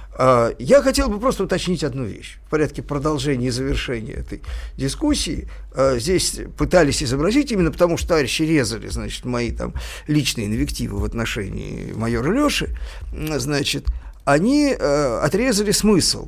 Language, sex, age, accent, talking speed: Russian, male, 50-69, native, 130 wpm